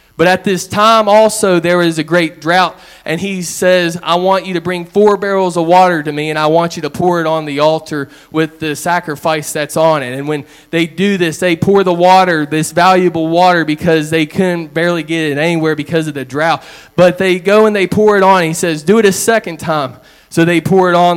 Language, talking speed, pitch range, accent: English, 235 wpm, 155-180 Hz, American